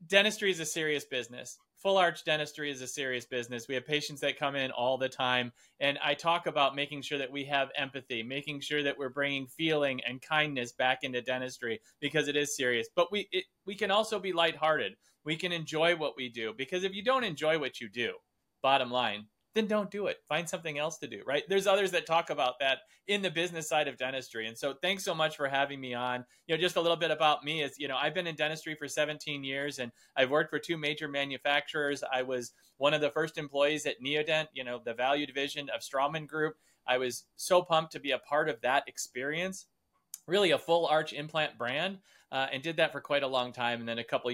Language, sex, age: English, male, 30-49